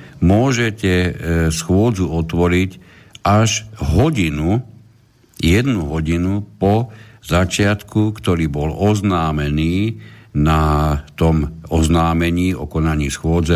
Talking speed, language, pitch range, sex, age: 80 wpm, Slovak, 80-105 Hz, male, 60-79